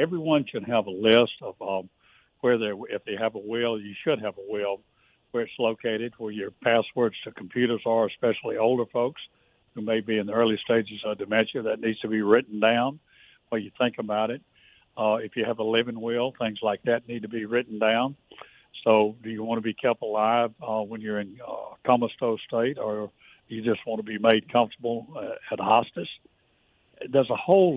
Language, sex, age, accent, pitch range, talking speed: English, male, 60-79, American, 110-125 Hz, 205 wpm